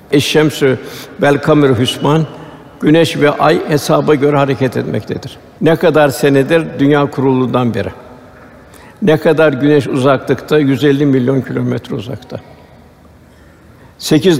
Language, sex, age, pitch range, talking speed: Turkish, male, 60-79, 130-150 Hz, 105 wpm